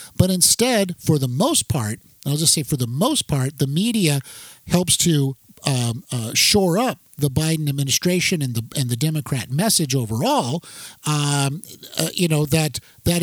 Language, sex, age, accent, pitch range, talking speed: English, male, 50-69, American, 135-190 Hz, 170 wpm